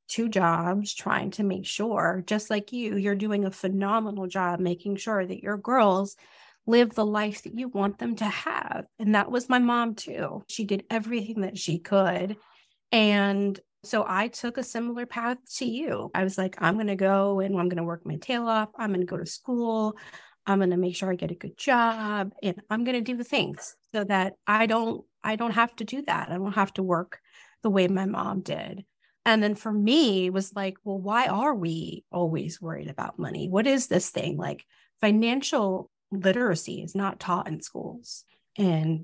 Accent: American